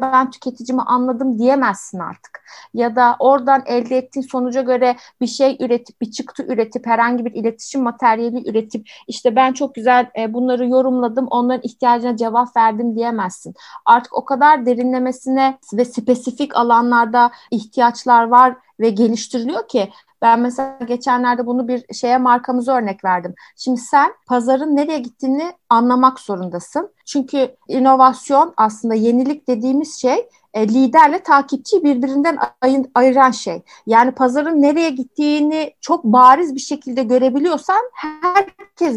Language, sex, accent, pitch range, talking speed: Turkish, female, native, 235-285 Hz, 130 wpm